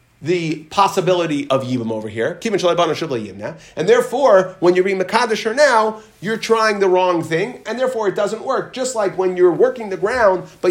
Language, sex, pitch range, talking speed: English, male, 180-255 Hz, 175 wpm